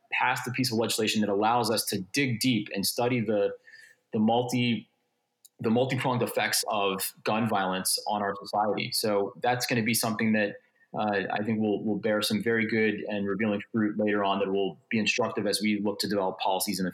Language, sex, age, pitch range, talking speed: English, male, 20-39, 105-135 Hz, 205 wpm